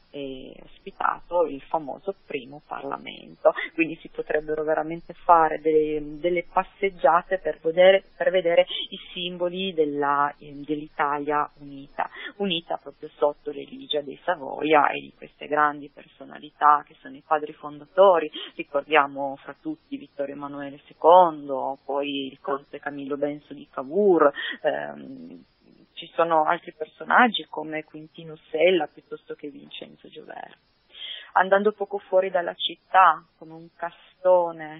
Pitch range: 145-175 Hz